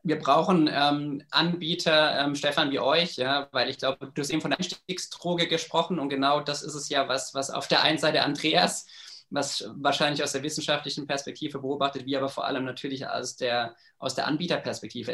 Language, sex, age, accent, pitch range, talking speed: German, male, 20-39, German, 140-160 Hz, 195 wpm